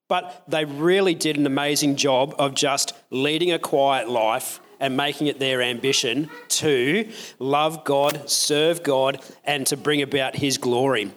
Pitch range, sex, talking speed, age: 140-165 Hz, male, 155 wpm, 40-59